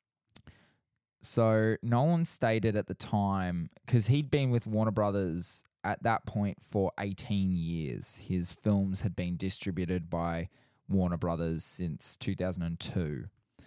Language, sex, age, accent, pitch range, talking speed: English, male, 20-39, Australian, 90-110 Hz, 125 wpm